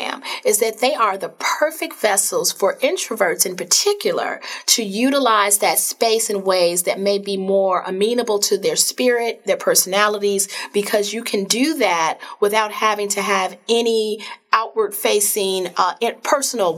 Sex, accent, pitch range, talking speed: female, American, 190-240 Hz, 145 wpm